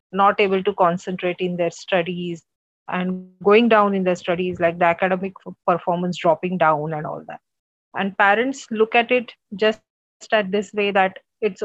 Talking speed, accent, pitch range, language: 170 wpm, Indian, 180-225 Hz, English